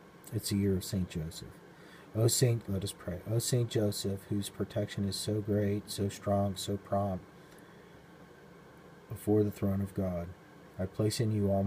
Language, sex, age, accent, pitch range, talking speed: English, male, 40-59, American, 95-105 Hz, 170 wpm